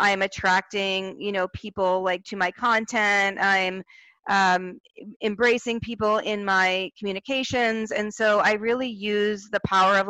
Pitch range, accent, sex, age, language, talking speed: 190-220 Hz, American, female, 40-59, English, 150 wpm